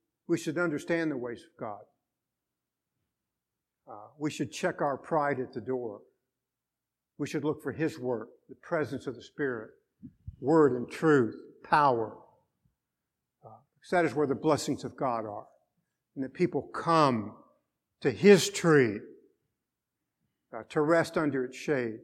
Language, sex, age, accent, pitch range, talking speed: English, male, 50-69, American, 130-165 Hz, 145 wpm